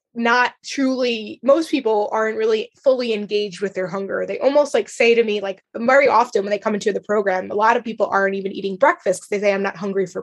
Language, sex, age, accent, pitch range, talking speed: English, female, 20-39, American, 205-255 Hz, 235 wpm